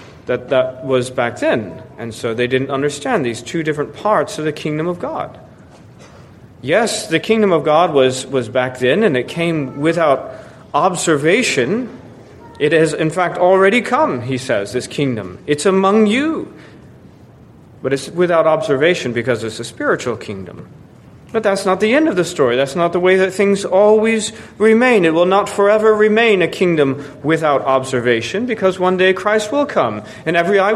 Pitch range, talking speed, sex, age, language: 135-200 Hz, 175 wpm, male, 30-49, English